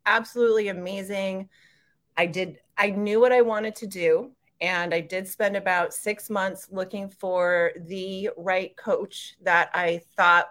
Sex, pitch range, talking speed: female, 160-205 Hz, 150 wpm